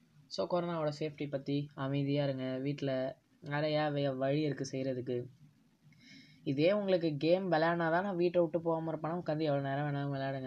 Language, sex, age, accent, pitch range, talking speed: Tamil, female, 20-39, native, 140-165 Hz, 145 wpm